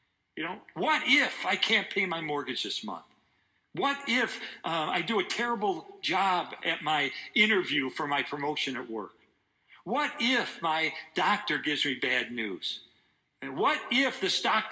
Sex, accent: male, American